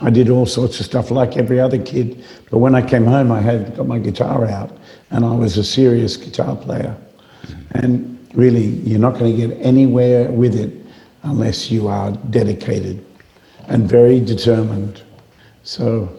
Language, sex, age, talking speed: English, male, 60-79, 165 wpm